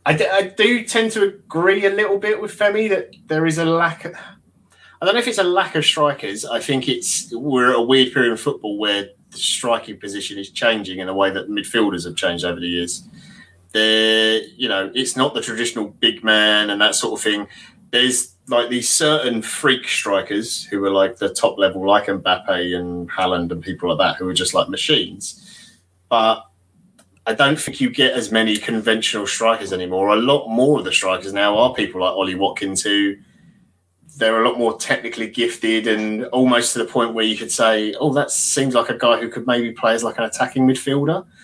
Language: English